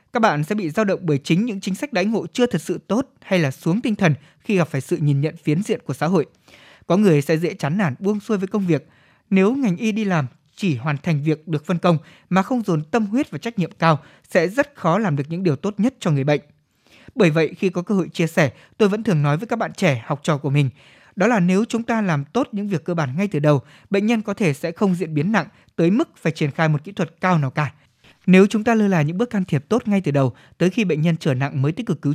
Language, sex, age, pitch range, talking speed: Vietnamese, male, 20-39, 150-200 Hz, 285 wpm